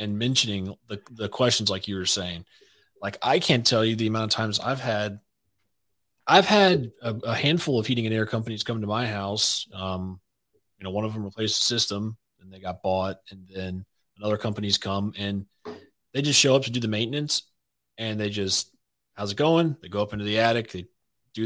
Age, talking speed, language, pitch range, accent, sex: 30-49, 210 wpm, English, 95-115 Hz, American, male